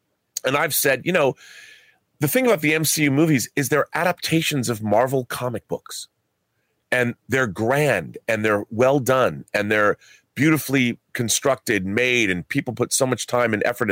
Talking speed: 165 wpm